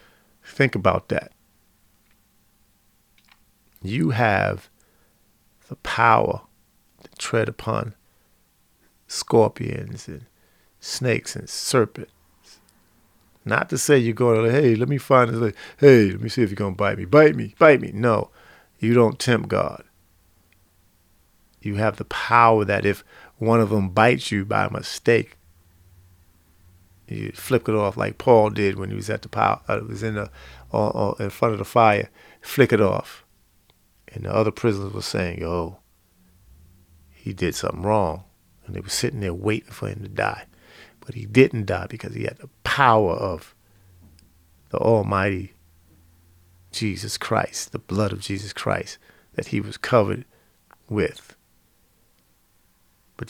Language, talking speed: English, 145 wpm